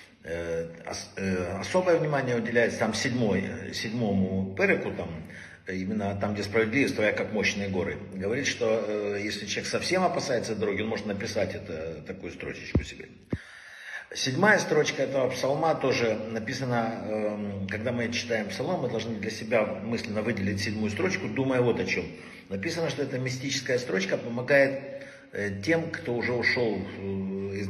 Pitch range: 100-125 Hz